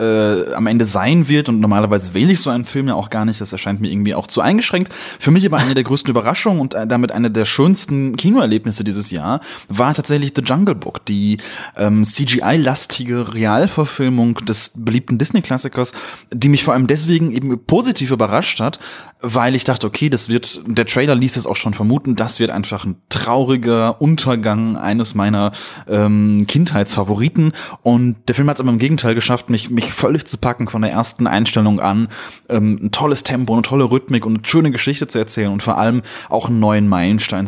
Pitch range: 105-140 Hz